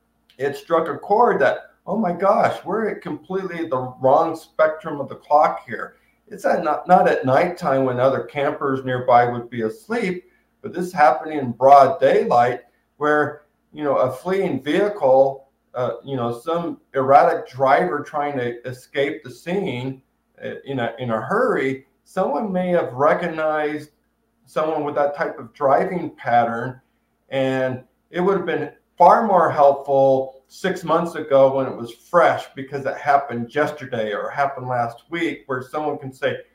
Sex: male